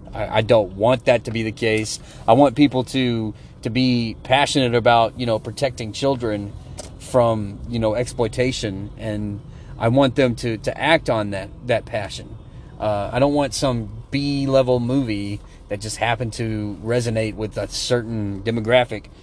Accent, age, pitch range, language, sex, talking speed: American, 30-49, 105-130 Hz, English, male, 160 wpm